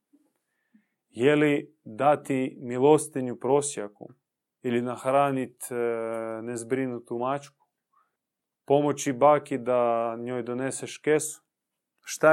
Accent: Serbian